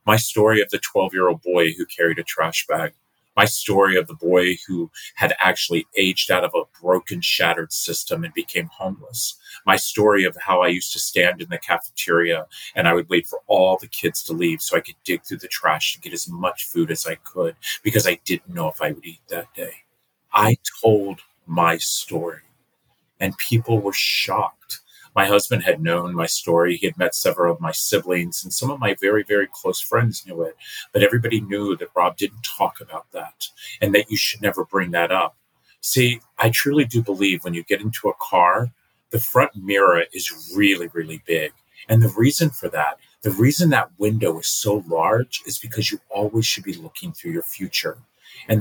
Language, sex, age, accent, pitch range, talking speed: English, male, 30-49, American, 95-140 Hz, 200 wpm